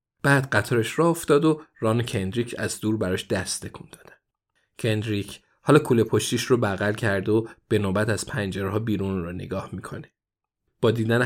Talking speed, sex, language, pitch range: 170 wpm, male, Persian, 105-135 Hz